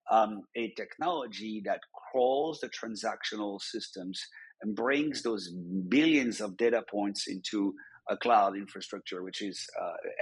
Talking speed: 130 wpm